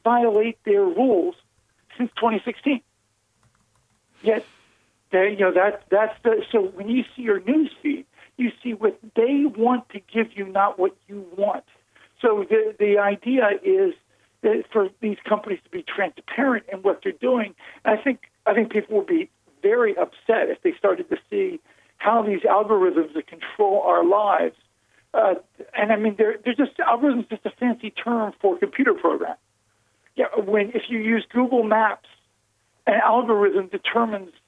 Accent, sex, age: American, male, 60-79